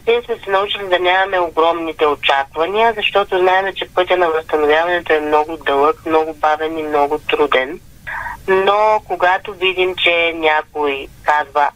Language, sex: Bulgarian, female